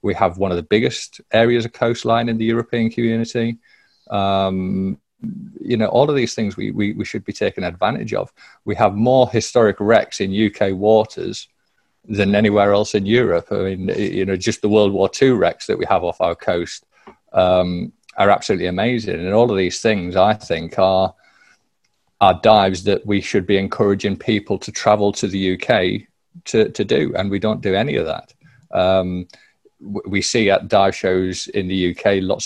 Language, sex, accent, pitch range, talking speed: English, male, British, 95-110 Hz, 190 wpm